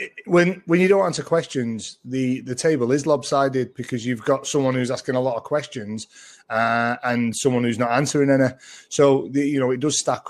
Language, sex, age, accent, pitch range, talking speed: English, male, 30-49, British, 120-145 Hz, 205 wpm